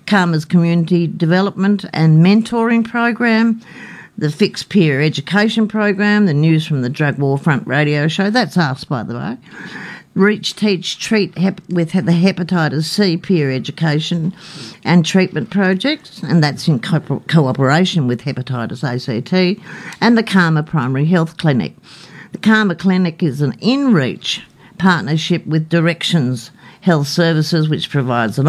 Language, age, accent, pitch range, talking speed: English, 50-69, Australian, 150-195 Hz, 135 wpm